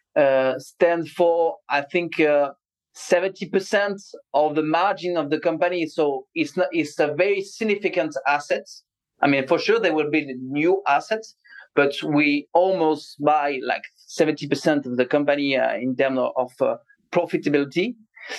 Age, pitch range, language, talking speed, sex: 30-49, 145-185 Hz, English, 155 wpm, male